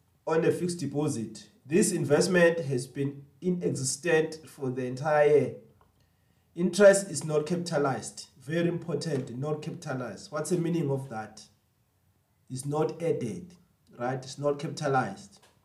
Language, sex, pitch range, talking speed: English, male, 135-175 Hz, 125 wpm